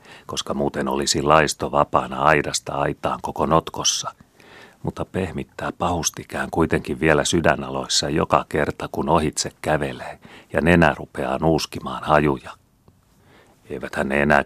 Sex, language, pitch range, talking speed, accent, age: male, Finnish, 65-75 Hz, 115 wpm, native, 40-59